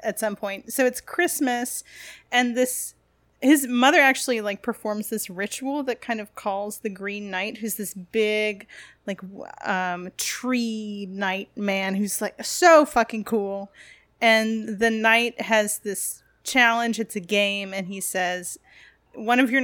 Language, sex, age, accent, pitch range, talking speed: English, female, 30-49, American, 200-245 Hz, 155 wpm